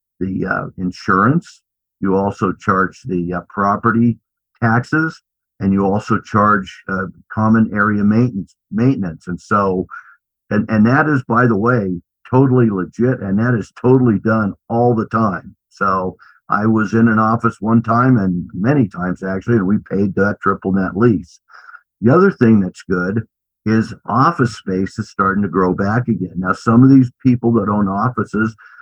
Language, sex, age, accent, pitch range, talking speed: English, male, 50-69, American, 95-120 Hz, 165 wpm